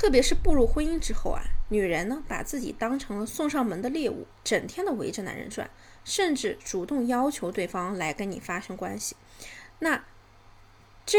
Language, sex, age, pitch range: Chinese, female, 20-39, 220-275 Hz